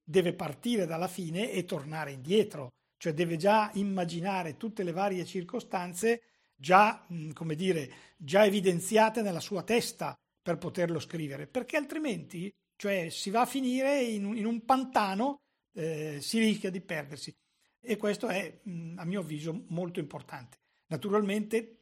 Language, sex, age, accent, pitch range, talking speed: Italian, male, 60-79, native, 160-195 Hz, 140 wpm